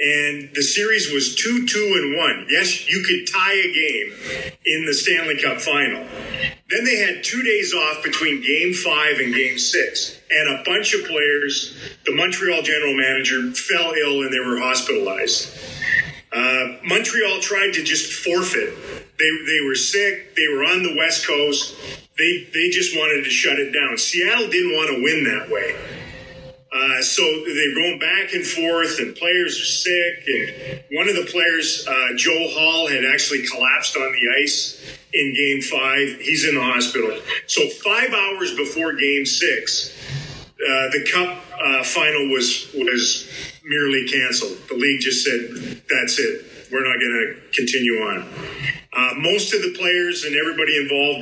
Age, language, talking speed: 40-59, English, 170 wpm